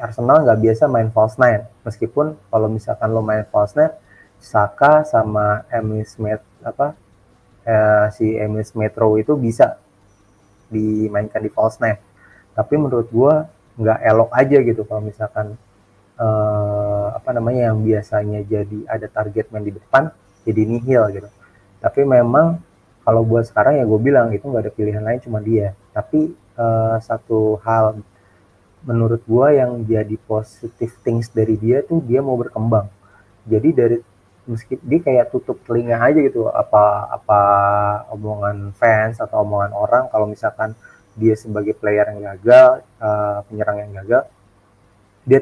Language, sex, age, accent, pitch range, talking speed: Indonesian, male, 30-49, native, 105-120 Hz, 145 wpm